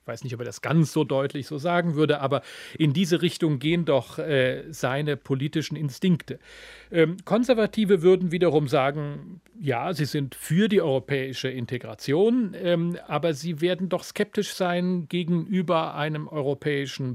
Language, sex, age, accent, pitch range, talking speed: German, male, 40-59, German, 135-180 Hz, 155 wpm